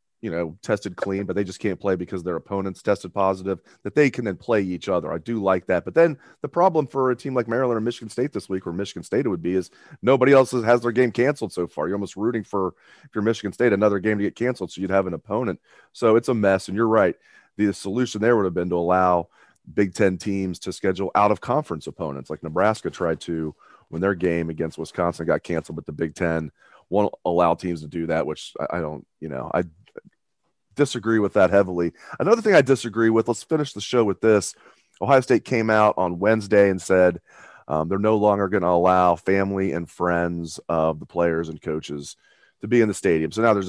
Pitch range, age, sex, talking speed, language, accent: 85-110 Hz, 30-49, male, 235 wpm, English, American